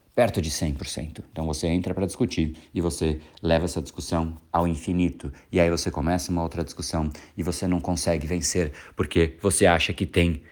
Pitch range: 85-110 Hz